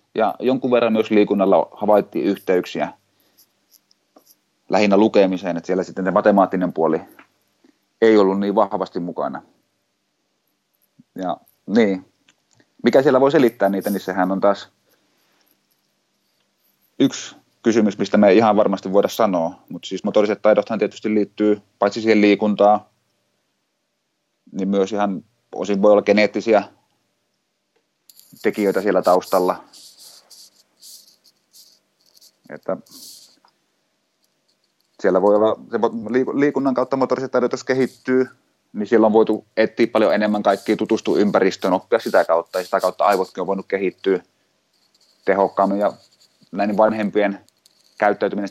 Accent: native